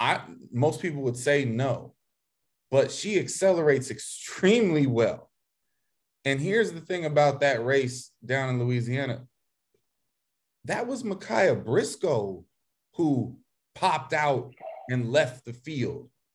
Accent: American